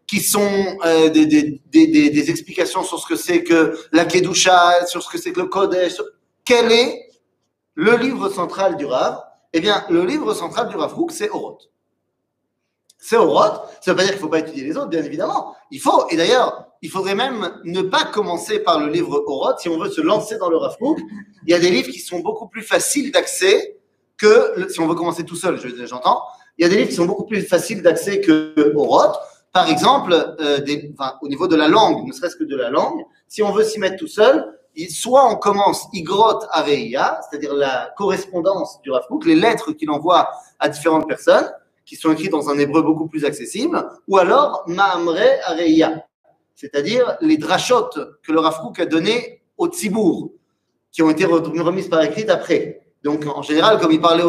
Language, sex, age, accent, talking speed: French, male, 40-59, French, 210 wpm